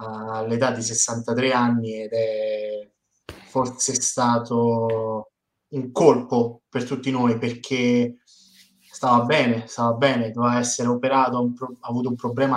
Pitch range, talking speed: 115-130 Hz, 120 wpm